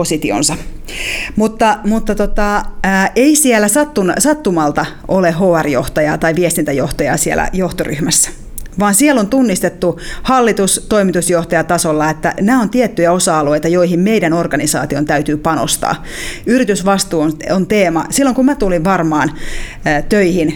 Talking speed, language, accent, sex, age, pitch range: 120 wpm, Finnish, native, female, 30-49, 160-220 Hz